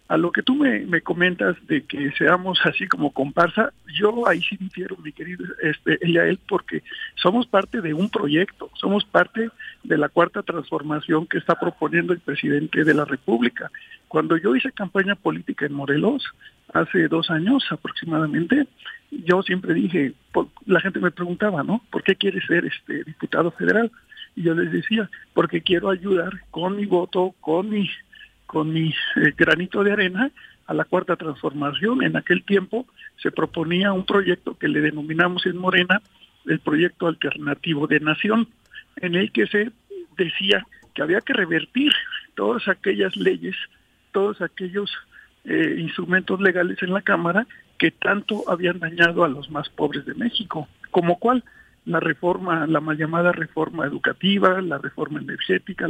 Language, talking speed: Spanish, 160 wpm